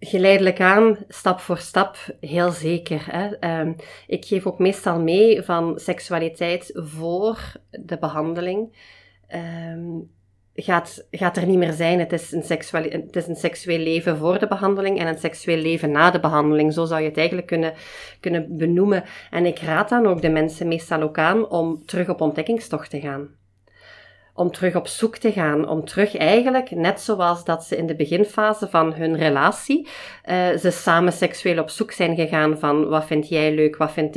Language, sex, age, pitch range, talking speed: Dutch, female, 30-49, 155-190 Hz, 180 wpm